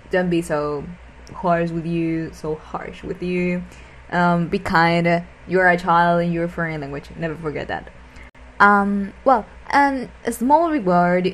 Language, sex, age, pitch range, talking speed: English, female, 10-29, 165-195 Hz, 155 wpm